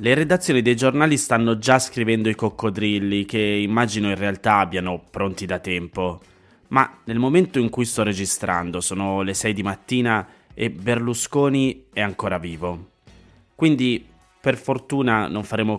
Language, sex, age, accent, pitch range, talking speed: Italian, male, 20-39, native, 95-115 Hz, 150 wpm